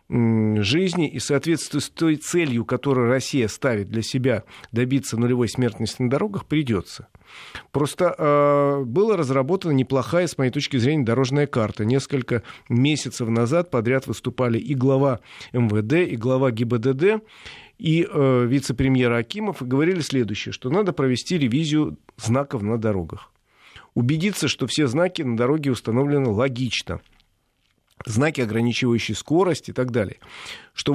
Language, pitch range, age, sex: Russian, 120-150 Hz, 40-59, male